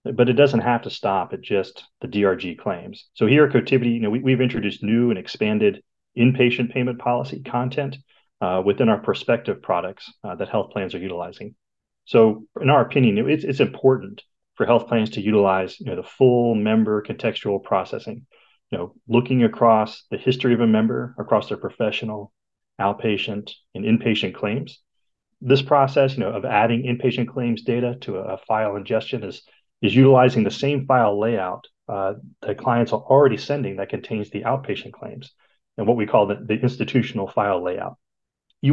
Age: 30-49